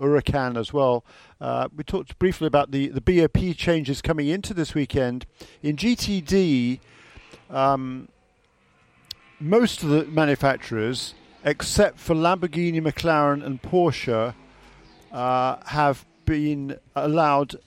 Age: 50-69